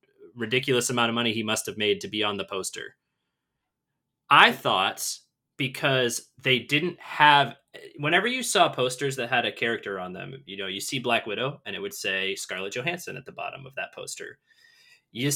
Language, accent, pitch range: English, American, 120-180 Hz